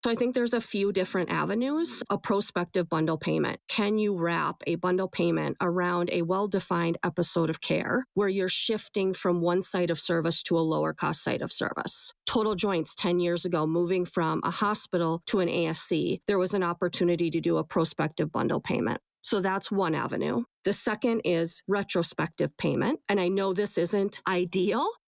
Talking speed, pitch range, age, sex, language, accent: 180 wpm, 175-215 Hz, 40-59, female, English, American